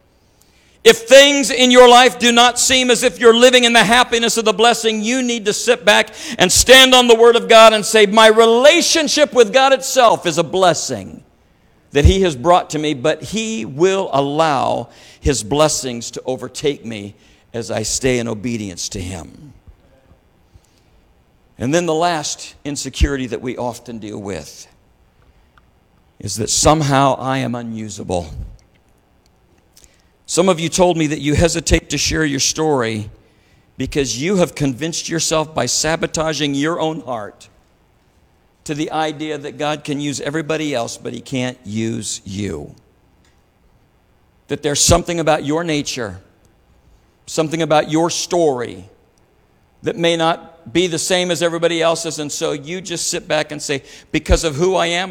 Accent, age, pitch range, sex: American, 60-79, 120-180 Hz, male